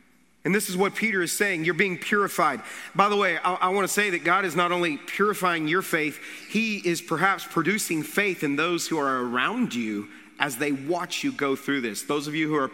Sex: male